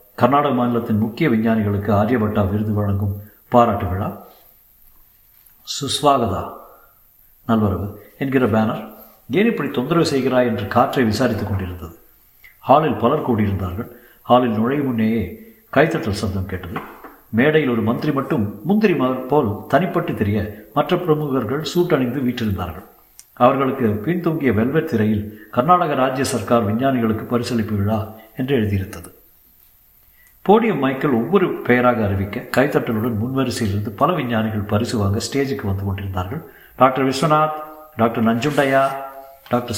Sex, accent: male, native